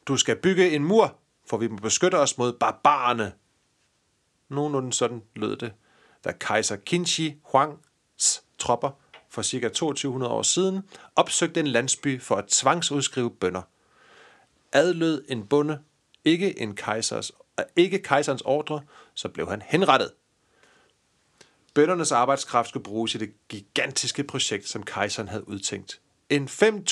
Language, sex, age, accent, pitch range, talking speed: Danish, male, 40-59, native, 115-155 Hz, 125 wpm